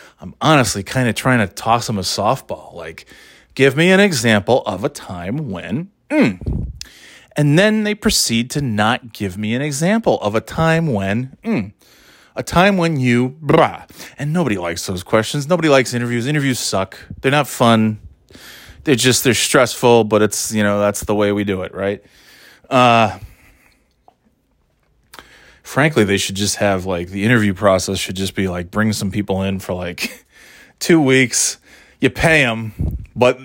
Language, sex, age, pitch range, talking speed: English, male, 30-49, 100-130 Hz, 170 wpm